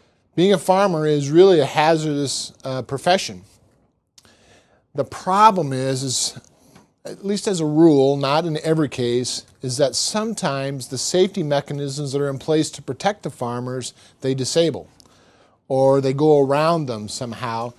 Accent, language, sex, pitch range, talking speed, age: American, English, male, 130-160 Hz, 150 wpm, 40-59